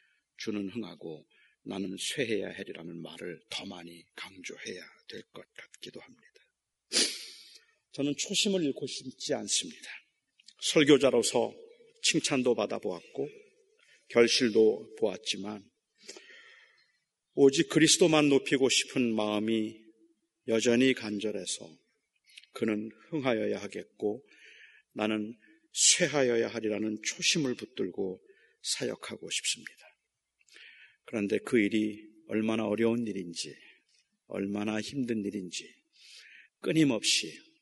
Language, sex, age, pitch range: Korean, male, 40-59, 110-155 Hz